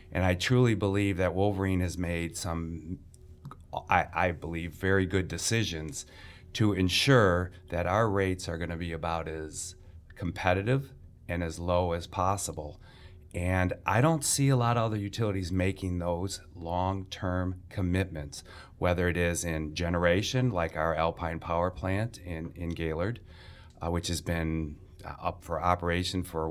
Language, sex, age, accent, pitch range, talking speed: English, male, 30-49, American, 85-100 Hz, 150 wpm